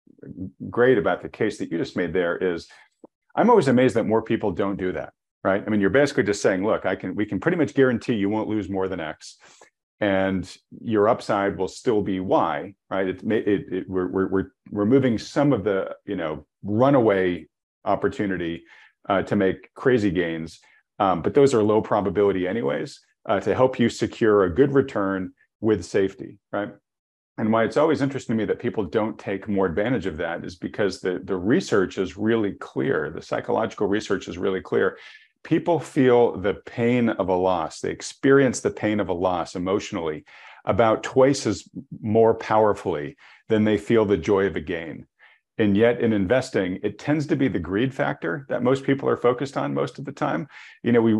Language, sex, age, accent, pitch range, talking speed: English, male, 40-59, American, 95-120 Hz, 195 wpm